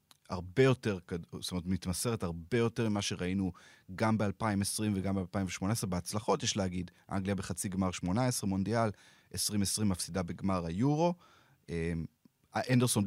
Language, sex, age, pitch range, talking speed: Hebrew, male, 30-49, 90-115 Hz, 125 wpm